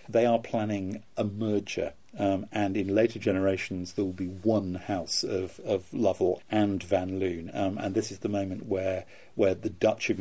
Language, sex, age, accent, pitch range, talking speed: English, male, 40-59, British, 95-110 Hz, 190 wpm